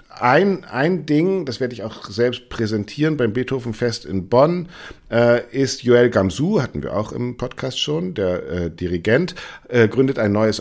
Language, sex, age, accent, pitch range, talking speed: German, male, 50-69, German, 105-135 Hz, 170 wpm